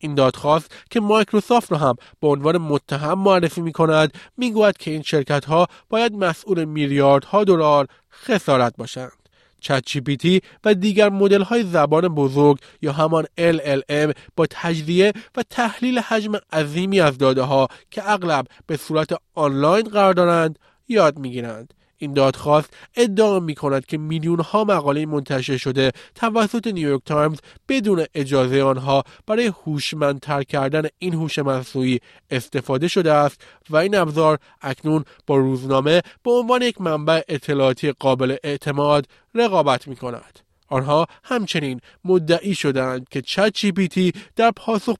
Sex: male